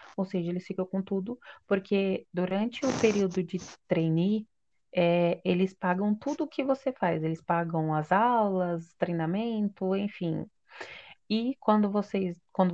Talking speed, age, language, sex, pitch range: 140 wpm, 20-39, Portuguese, female, 180-215 Hz